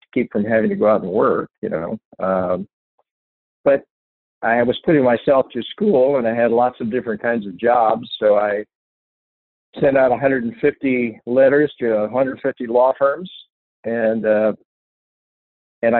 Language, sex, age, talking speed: English, male, 50-69, 150 wpm